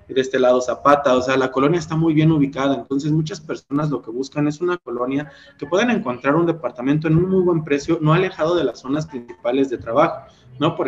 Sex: male